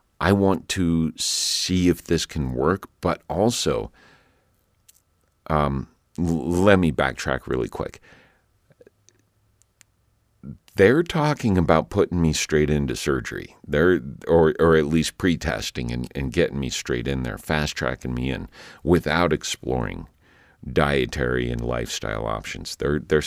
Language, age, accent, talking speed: English, 50-69, American, 125 wpm